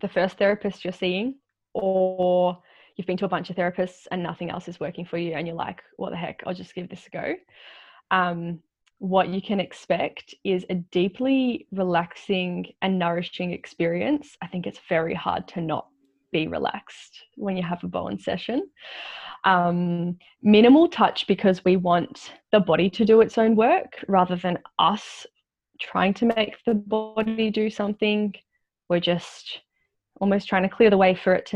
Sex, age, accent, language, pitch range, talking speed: female, 10-29, Australian, English, 175-205 Hz, 175 wpm